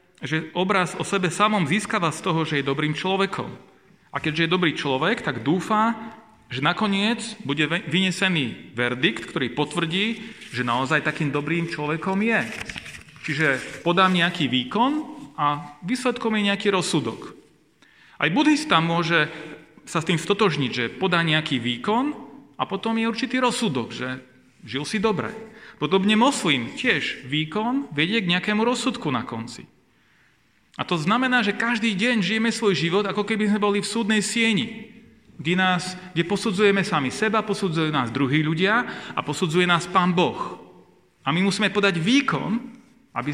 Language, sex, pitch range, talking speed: Slovak, male, 155-215 Hz, 150 wpm